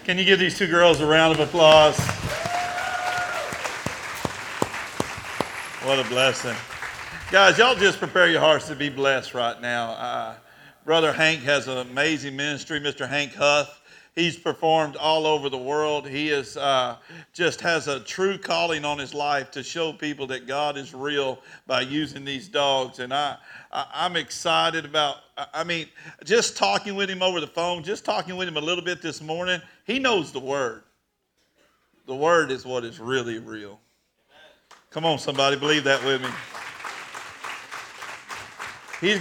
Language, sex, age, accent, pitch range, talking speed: English, male, 50-69, American, 130-160 Hz, 160 wpm